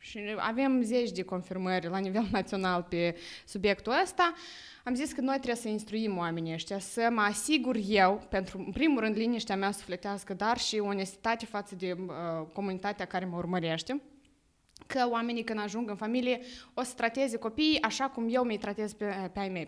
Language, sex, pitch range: English, female, 195-245 Hz